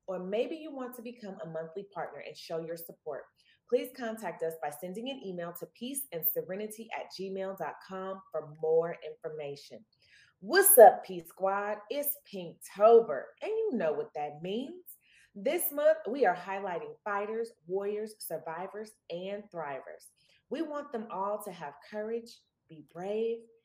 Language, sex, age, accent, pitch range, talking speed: English, female, 30-49, American, 170-255 Hz, 145 wpm